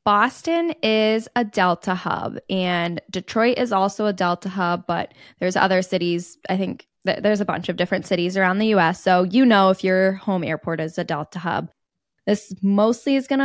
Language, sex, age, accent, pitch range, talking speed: English, female, 10-29, American, 180-215 Hz, 185 wpm